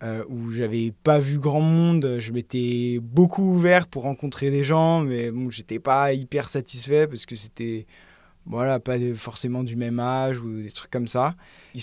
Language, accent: French, French